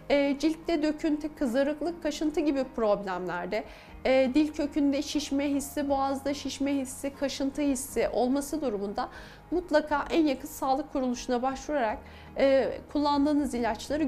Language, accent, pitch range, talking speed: Turkish, native, 250-300 Hz, 105 wpm